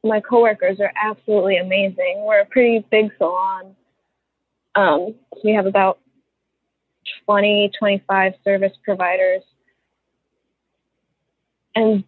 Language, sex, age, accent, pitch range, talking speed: English, female, 20-39, American, 205-260 Hz, 95 wpm